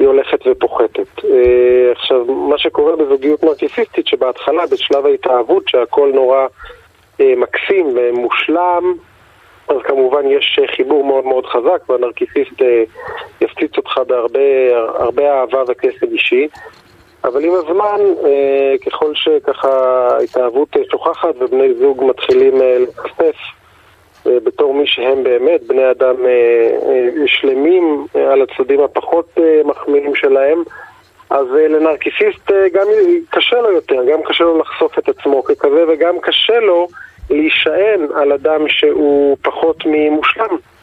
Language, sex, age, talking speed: Hebrew, male, 40-59, 110 wpm